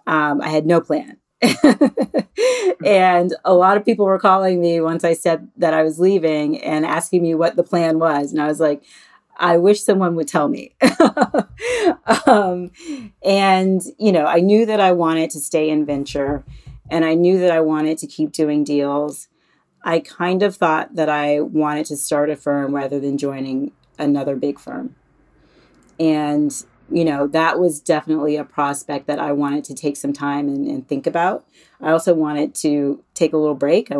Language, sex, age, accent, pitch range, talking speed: English, female, 30-49, American, 145-175 Hz, 185 wpm